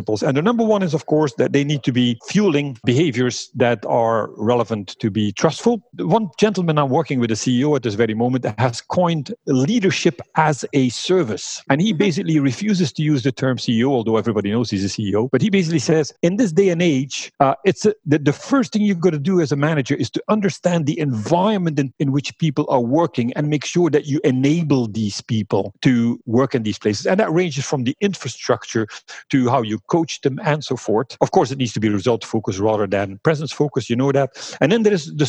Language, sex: English, male